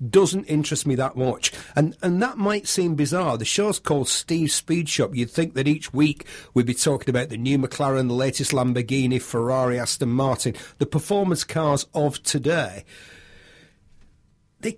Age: 40-59